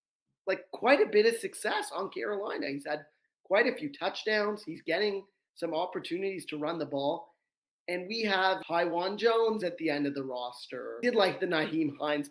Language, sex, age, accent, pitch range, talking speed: English, male, 30-49, American, 155-215 Hz, 185 wpm